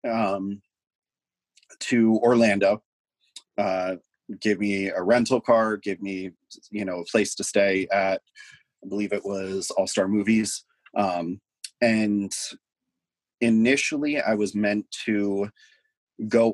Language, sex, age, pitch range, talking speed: English, male, 30-49, 95-110 Hz, 115 wpm